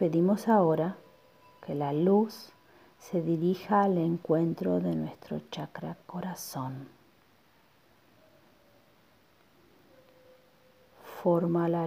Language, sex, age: Spanish, female, 40-59